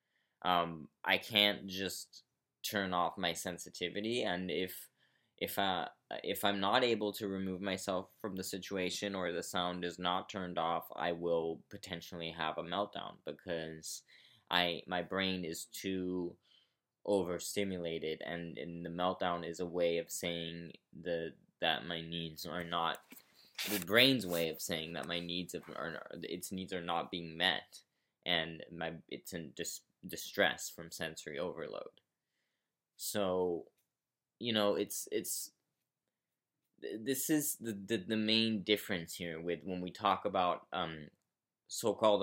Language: English